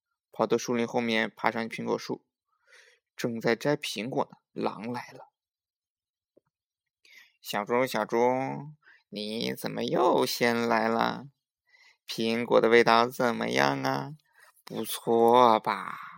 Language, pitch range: Chinese, 115-150 Hz